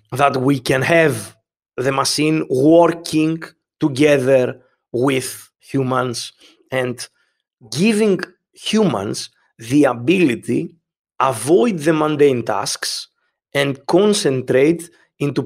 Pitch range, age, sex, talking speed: 130-165 Hz, 30-49, male, 90 wpm